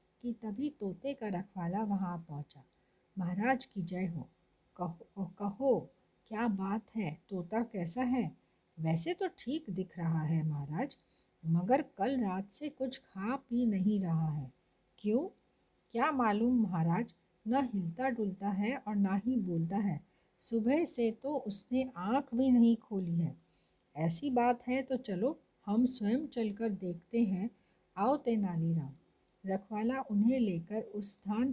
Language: Hindi